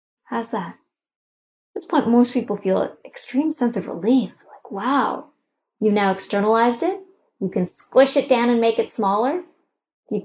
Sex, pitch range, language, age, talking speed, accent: female, 210-285 Hz, English, 10-29, 170 wpm, American